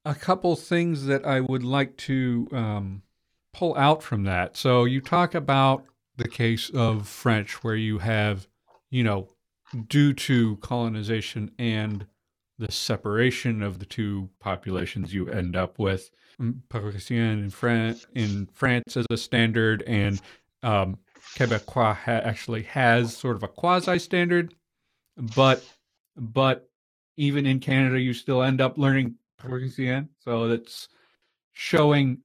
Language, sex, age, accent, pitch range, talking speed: English, male, 40-59, American, 110-145 Hz, 130 wpm